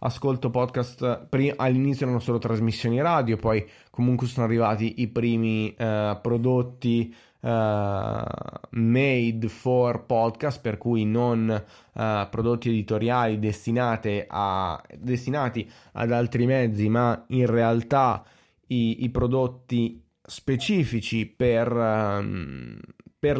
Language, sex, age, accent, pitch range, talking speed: Italian, male, 20-39, native, 110-130 Hz, 100 wpm